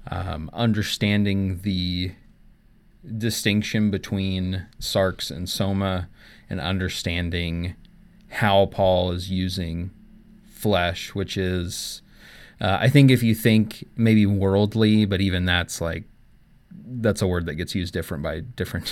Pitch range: 95-110 Hz